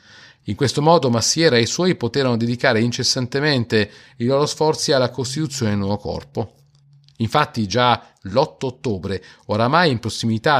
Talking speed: 140 wpm